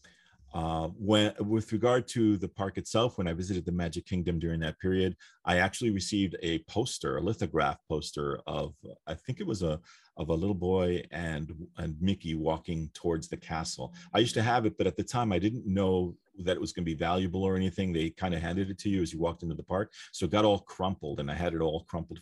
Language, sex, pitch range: English, male, 80-100 Hz